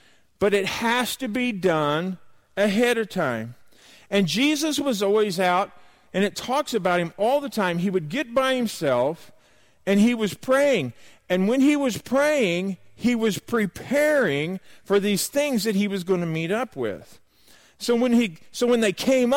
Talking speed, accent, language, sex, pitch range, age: 175 wpm, American, English, male, 175-245 Hz, 50-69